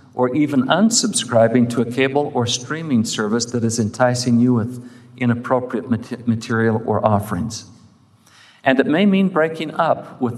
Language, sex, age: English, male, 50-69